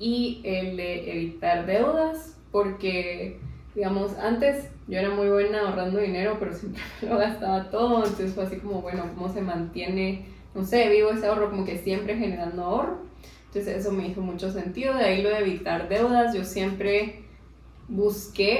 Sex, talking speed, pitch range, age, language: female, 170 wpm, 185-215 Hz, 20-39, Spanish